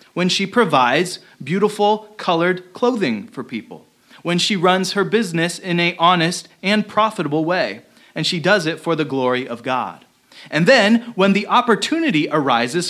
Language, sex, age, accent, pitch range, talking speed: English, male, 30-49, American, 160-215 Hz, 160 wpm